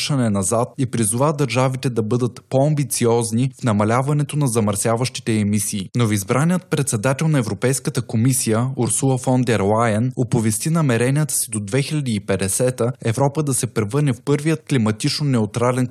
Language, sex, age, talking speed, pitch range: Bulgarian, male, 20-39, 130 wpm, 115-140 Hz